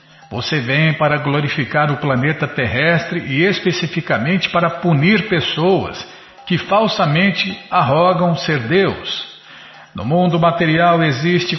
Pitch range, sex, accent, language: 120-170 Hz, male, Brazilian, Portuguese